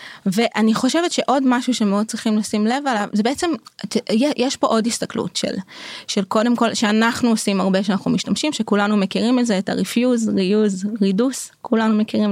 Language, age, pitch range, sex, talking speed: Hebrew, 20-39, 195-235 Hz, female, 160 wpm